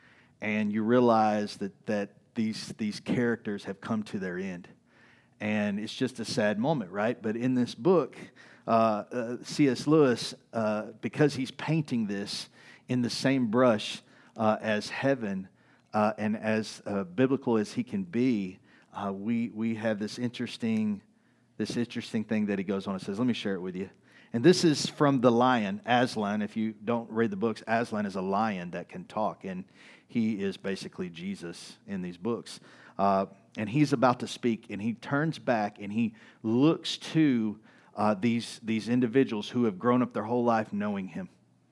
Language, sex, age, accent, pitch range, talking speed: English, male, 50-69, American, 105-130 Hz, 180 wpm